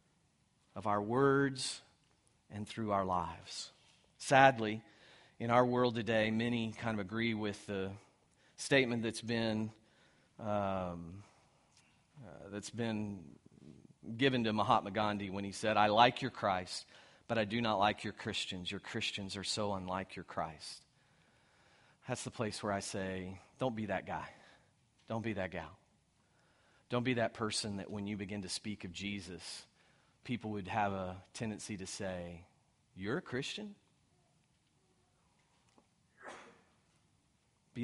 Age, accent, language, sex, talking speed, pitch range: 40-59, American, English, male, 140 wpm, 100-115 Hz